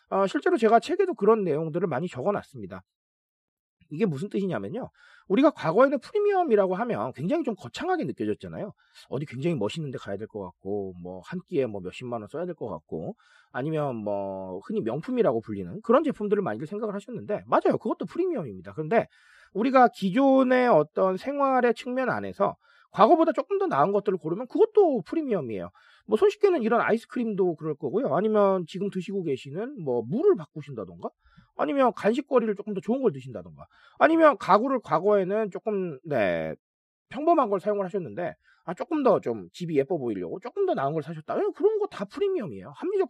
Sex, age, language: male, 40-59, Korean